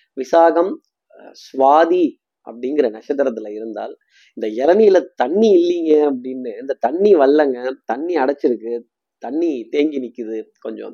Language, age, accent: Tamil, 30-49, native